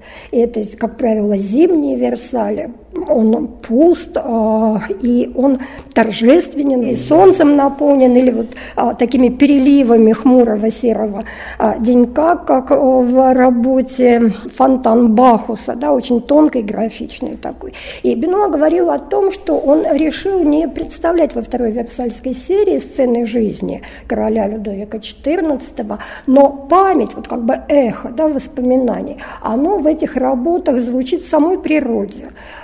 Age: 50-69